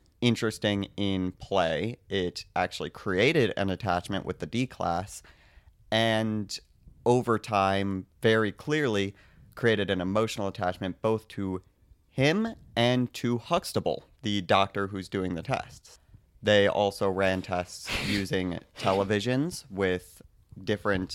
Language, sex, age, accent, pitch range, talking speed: English, male, 30-49, American, 95-110 Hz, 115 wpm